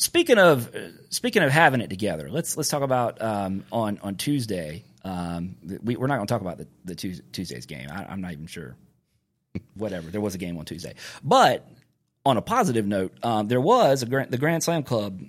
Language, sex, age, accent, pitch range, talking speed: English, male, 40-59, American, 95-130 Hz, 210 wpm